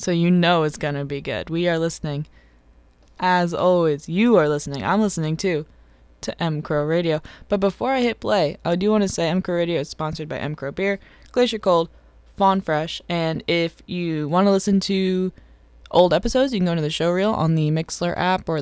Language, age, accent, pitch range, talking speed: English, 20-39, American, 150-185 Hz, 215 wpm